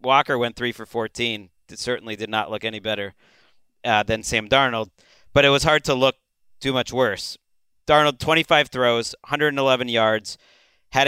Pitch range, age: 110-135 Hz, 40-59